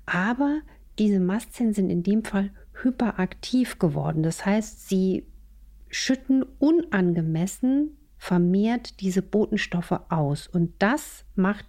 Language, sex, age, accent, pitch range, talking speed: German, female, 50-69, German, 175-220 Hz, 110 wpm